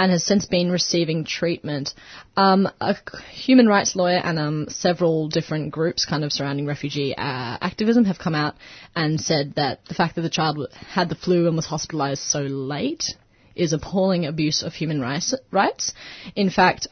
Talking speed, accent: 175 wpm, Australian